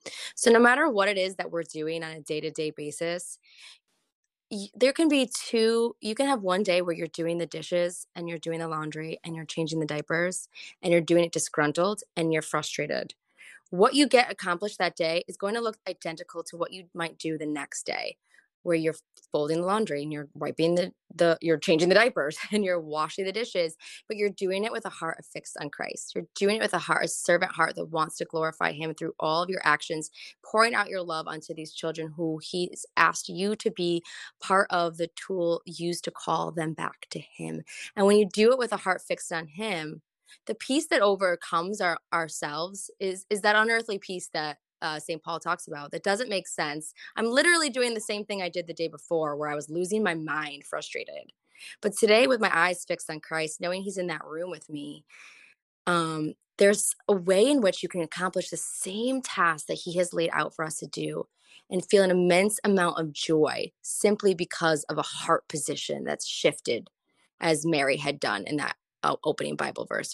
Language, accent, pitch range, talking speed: English, American, 160-205 Hz, 210 wpm